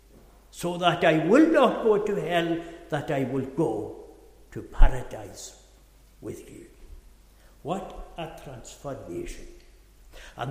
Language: English